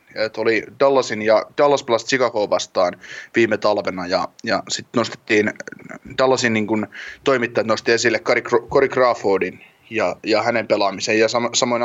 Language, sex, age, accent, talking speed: Finnish, male, 20-39, native, 135 wpm